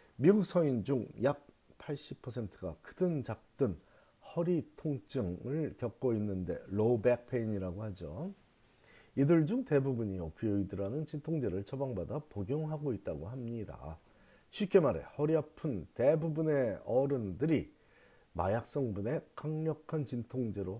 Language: Korean